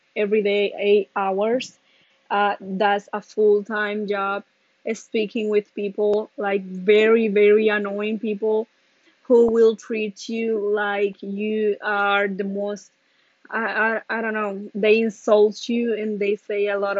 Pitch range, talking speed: 205-225 Hz, 140 wpm